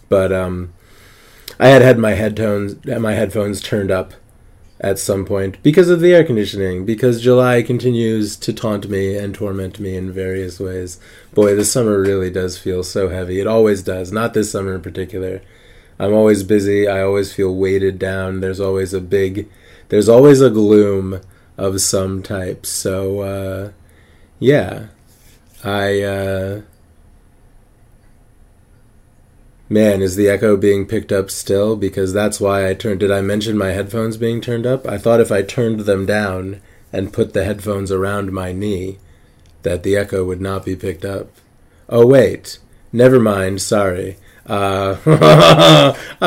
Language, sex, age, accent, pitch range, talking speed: English, male, 20-39, American, 95-115 Hz, 155 wpm